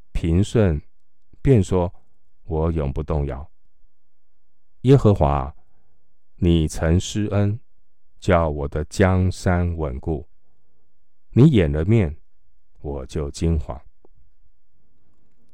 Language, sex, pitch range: Chinese, male, 80-100 Hz